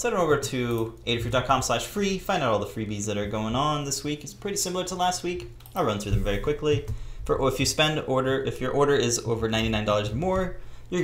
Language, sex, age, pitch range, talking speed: English, male, 20-39, 105-135 Hz, 240 wpm